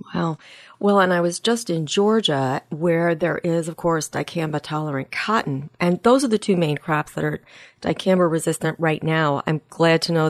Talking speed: 180 wpm